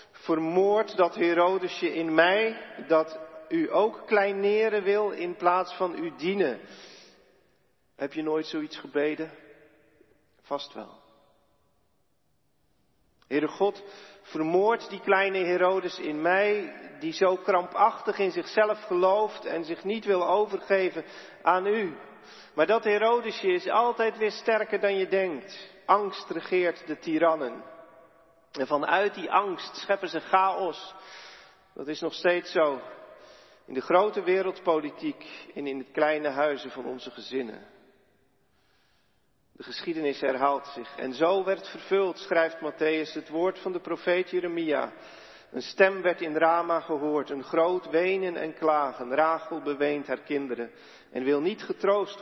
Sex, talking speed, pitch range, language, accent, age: male, 135 wpm, 150-195 Hz, Dutch, Dutch, 40-59